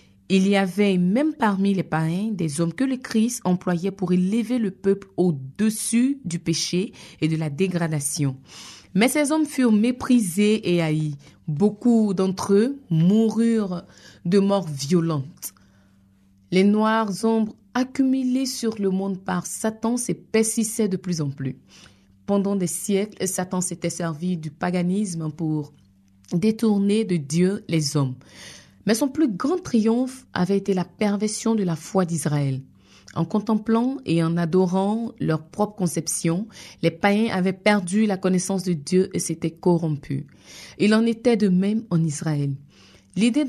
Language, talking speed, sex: French, 145 wpm, female